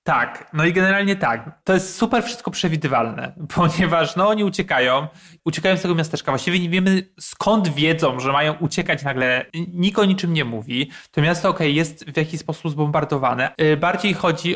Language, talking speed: Polish, 175 wpm